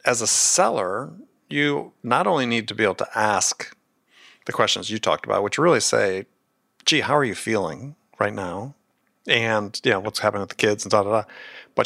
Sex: male